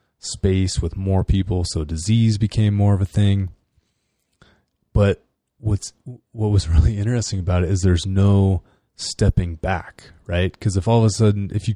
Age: 20-39